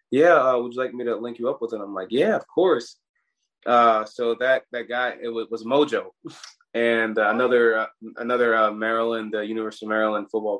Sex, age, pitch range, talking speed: male, 20-39, 110-125 Hz, 220 wpm